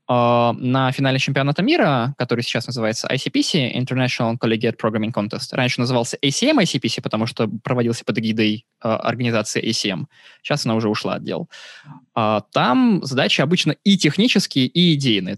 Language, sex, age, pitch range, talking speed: Russian, male, 20-39, 120-155 Hz, 150 wpm